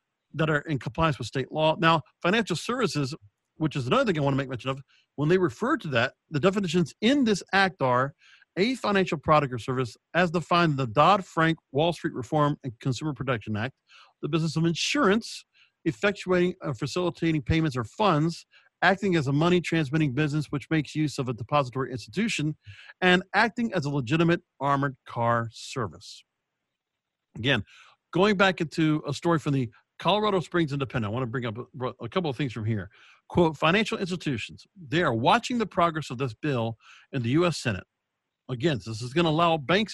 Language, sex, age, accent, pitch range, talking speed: English, male, 50-69, American, 135-180 Hz, 185 wpm